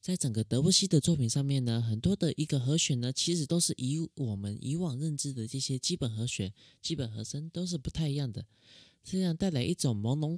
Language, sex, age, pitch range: Chinese, male, 20-39, 120-170 Hz